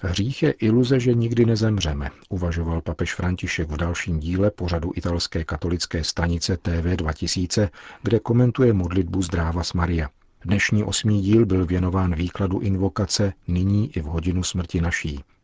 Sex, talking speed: male, 140 wpm